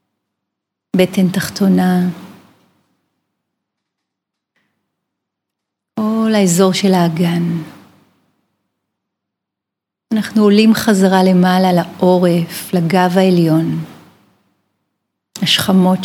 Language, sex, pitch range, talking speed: Hebrew, female, 180-200 Hz, 50 wpm